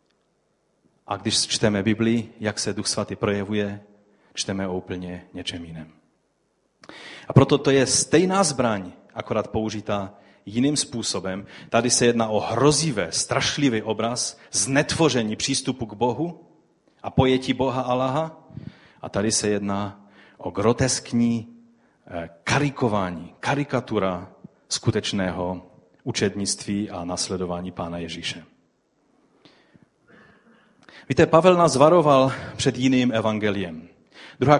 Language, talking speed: Czech, 105 wpm